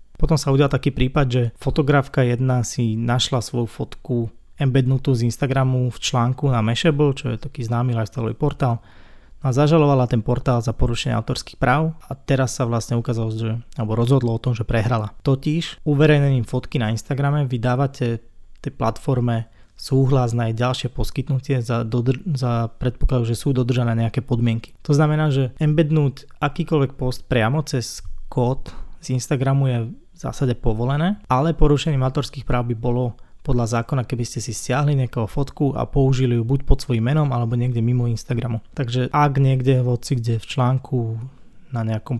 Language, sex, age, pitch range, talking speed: Slovak, male, 20-39, 120-135 Hz, 160 wpm